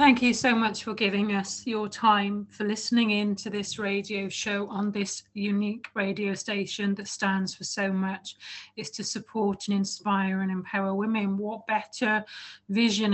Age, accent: 30-49, British